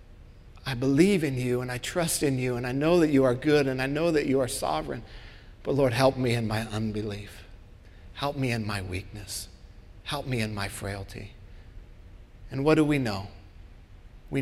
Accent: American